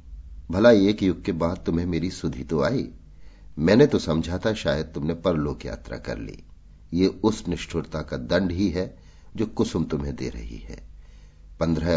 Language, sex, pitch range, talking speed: Hindi, male, 75-100 Hz, 170 wpm